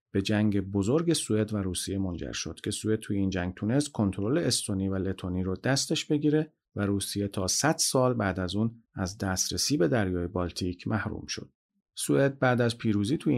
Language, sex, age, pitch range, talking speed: Persian, male, 40-59, 95-125 Hz, 185 wpm